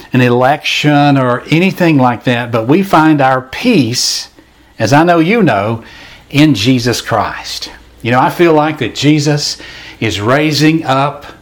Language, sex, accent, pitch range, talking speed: English, male, American, 120-155 Hz, 150 wpm